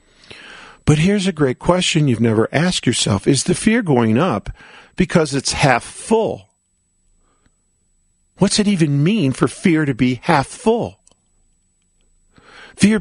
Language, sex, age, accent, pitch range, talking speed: English, male, 50-69, American, 135-200 Hz, 135 wpm